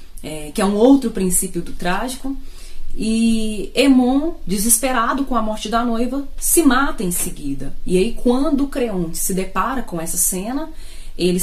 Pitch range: 180-255 Hz